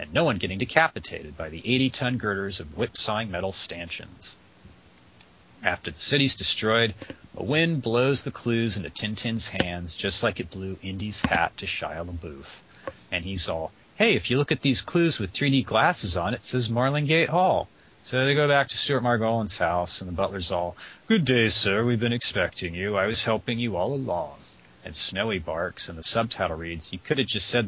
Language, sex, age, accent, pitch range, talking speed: English, male, 40-59, American, 85-120 Hz, 195 wpm